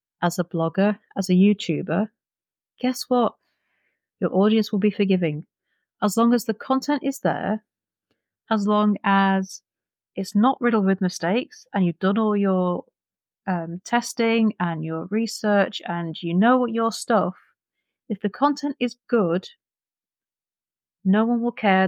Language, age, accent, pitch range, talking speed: English, 30-49, British, 185-230 Hz, 145 wpm